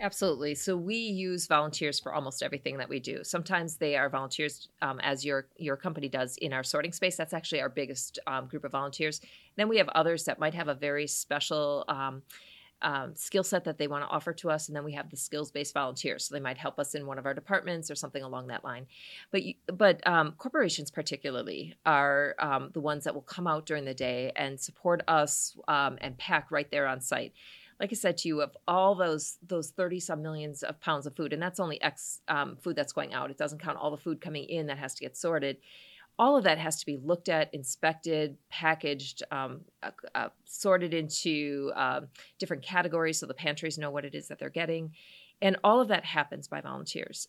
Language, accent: English, American